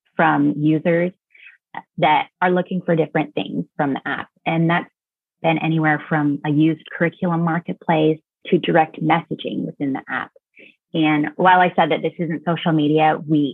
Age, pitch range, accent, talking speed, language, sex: 20-39, 150-180 Hz, American, 160 wpm, English, female